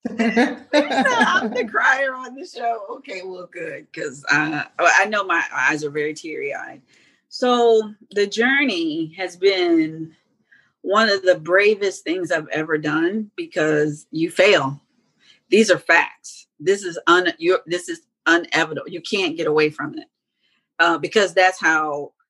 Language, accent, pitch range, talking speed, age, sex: English, American, 155-220 Hz, 150 wpm, 40-59, female